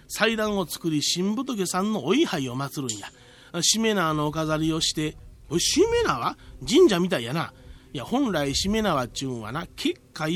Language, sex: Japanese, male